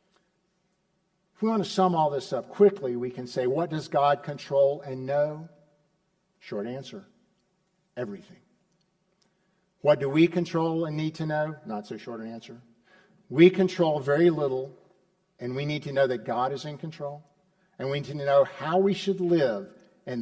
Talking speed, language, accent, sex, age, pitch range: 170 wpm, English, American, male, 50-69, 145-190 Hz